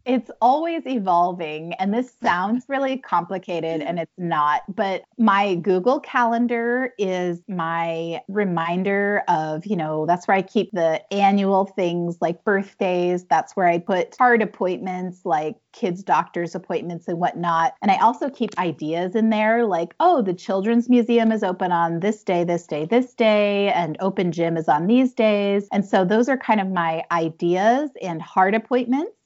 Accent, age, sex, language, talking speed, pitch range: American, 30-49, female, English, 165 wpm, 175-220 Hz